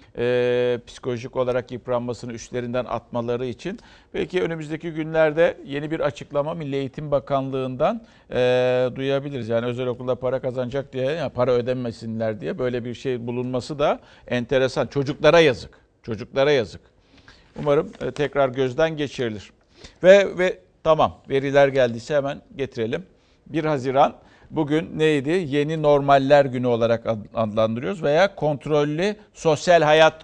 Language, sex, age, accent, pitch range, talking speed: Turkish, male, 50-69, native, 125-165 Hz, 120 wpm